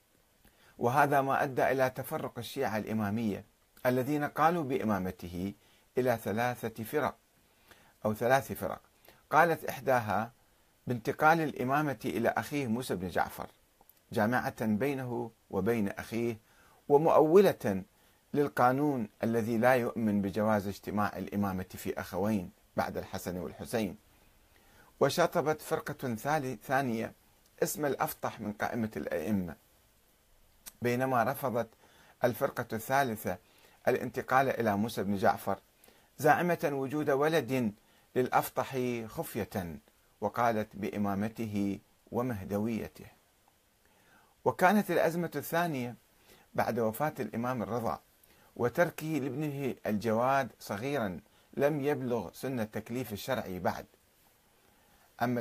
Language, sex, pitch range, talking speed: Arabic, male, 105-135 Hz, 90 wpm